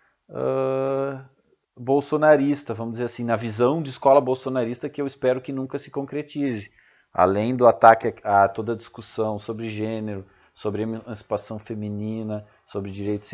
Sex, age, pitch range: male, 40-59, 105-135 Hz